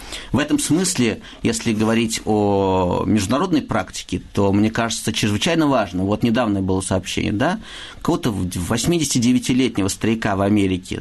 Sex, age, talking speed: male, 50-69, 125 wpm